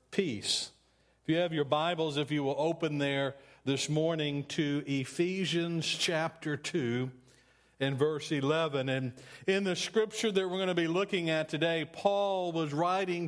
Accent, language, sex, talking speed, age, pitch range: American, English, male, 160 wpm, 50-69, 125-170 Hz